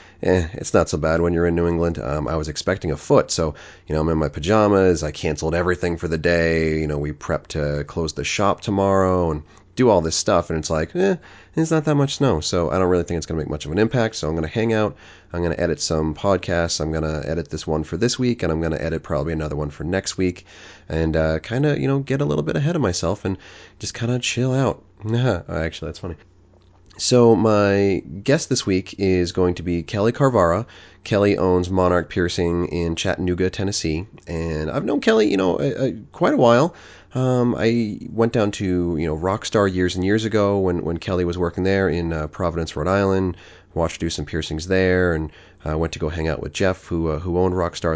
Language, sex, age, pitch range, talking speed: English, male, 30-49, 80-100 Hz, 235 wpm